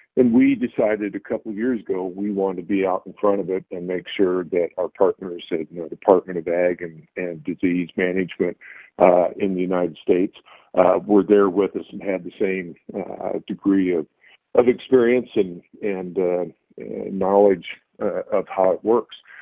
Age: 50-69